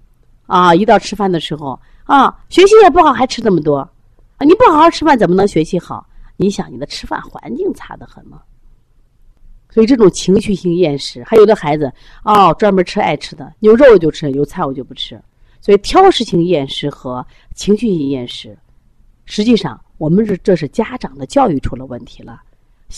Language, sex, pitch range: Chinese, female, 145-235 Hz